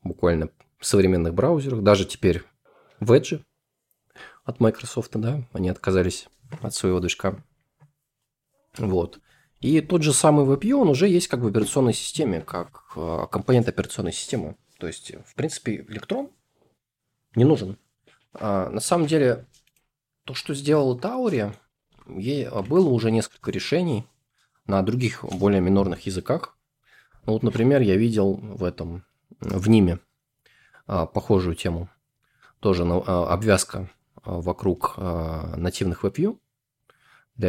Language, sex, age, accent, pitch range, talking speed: Russian, male, 20-39, native, 90-130 Hz, 125 wpm